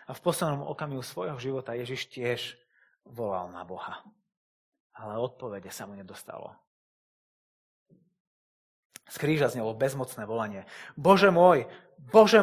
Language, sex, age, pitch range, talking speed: Slovak, male, 30-49, 110-160 Hz, 110 wpm